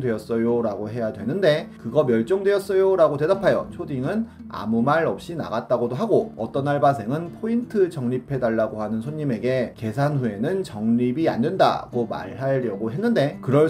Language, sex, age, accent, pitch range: Korean, male, 30-49, native, 120-190 Hz